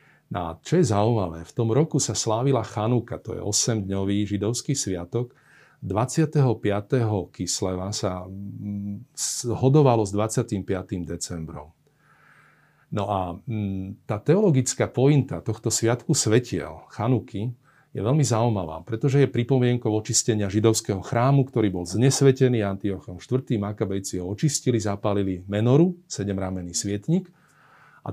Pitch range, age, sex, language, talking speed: 100-130 Hz, 40-59, male, Slovak, 115 wpm